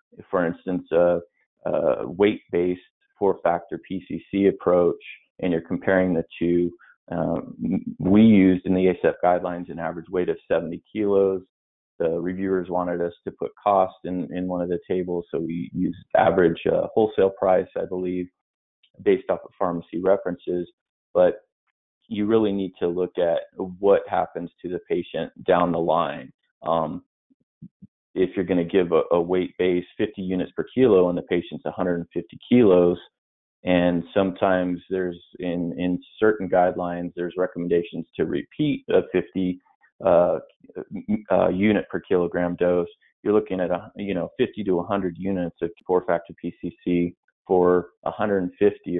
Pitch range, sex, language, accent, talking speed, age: 85-95 Hz, male, English, American, 145 wpm, 30-49